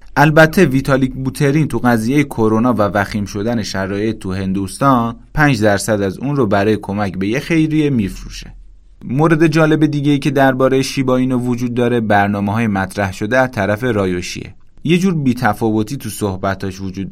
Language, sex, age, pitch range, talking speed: Persian, male, 30-49, 100-135 Hz, 160 wpm